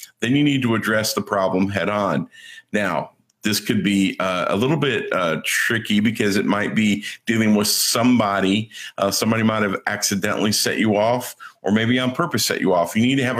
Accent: American